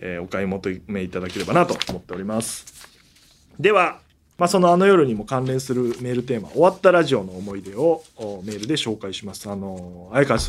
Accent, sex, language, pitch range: native, male, Japanese, 110-160 Hz